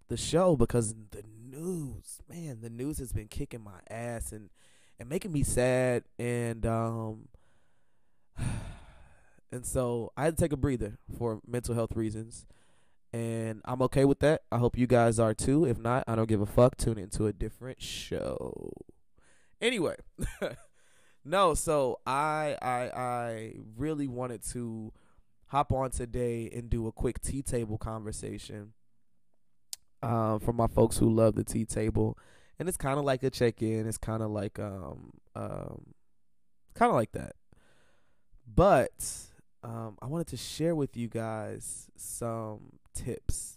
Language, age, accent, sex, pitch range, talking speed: English, 20-39, American, male, 110-125 Hz, 155 wpm